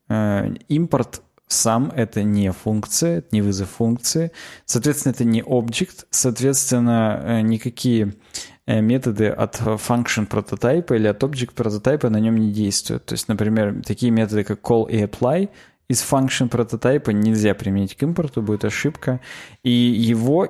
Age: 20-39